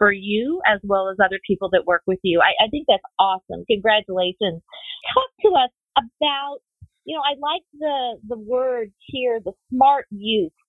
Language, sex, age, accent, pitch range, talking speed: English, female, 40-59, American, 190-250 Hz, 180 wpm